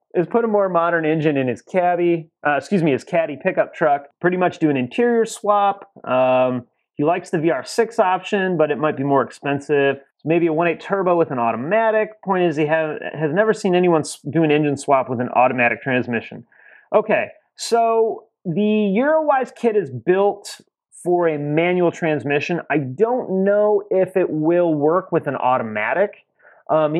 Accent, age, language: American, 30-49, English